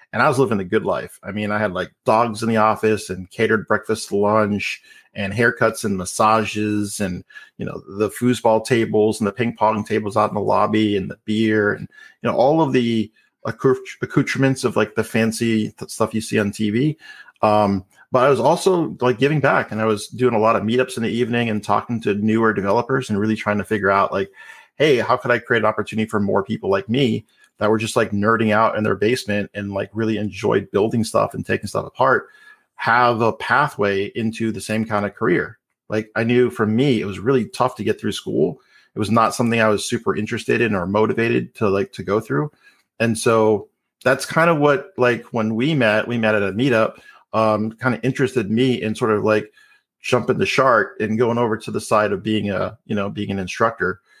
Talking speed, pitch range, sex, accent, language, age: 220 wpm, 105-120 Hz, male, American, English, 40-59